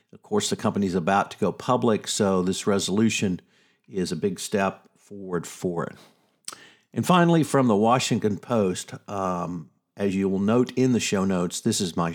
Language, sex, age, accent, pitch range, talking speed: English, male, 50-69, American, 95-115 Hz, 185 wpm